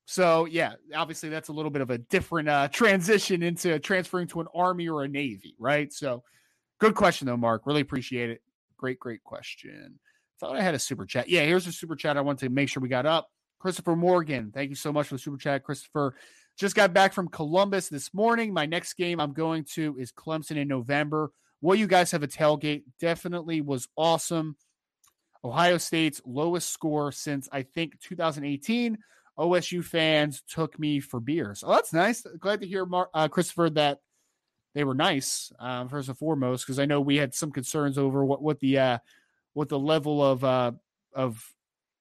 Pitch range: 140-175 Hz